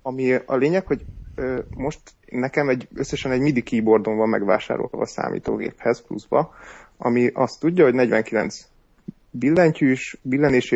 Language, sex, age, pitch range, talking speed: Hungarian, male, 30-49, 115-145 Hz, 130 wpm